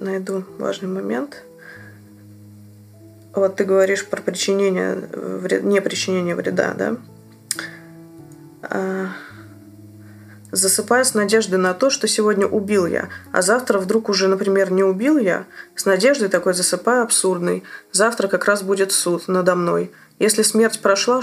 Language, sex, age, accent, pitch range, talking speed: Russian, female, 20-39, native, 175-210 Hz, 125 wpm